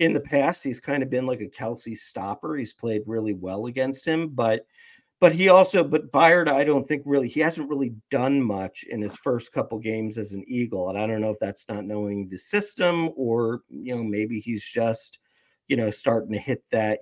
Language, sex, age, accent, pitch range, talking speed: English, male, 50-69, American, 110-140 Hz, 220 wpm